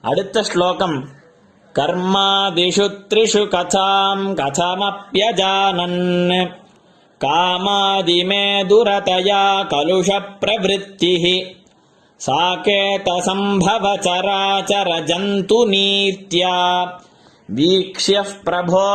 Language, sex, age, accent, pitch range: Tamil, male, 20-39, native, 180-200 Hz